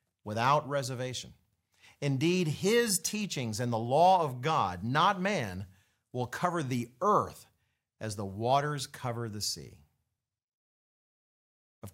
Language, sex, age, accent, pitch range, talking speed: English, male, 40-59, American, 110-155 Hz, 115 wpm